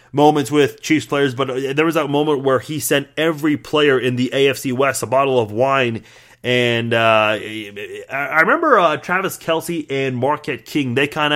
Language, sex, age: English, male, 30-49